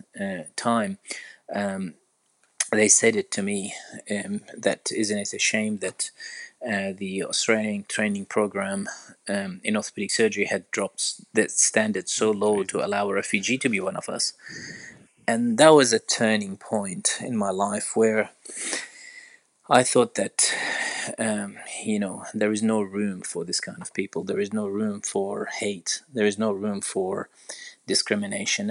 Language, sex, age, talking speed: English, male, 30-49, 160 wpm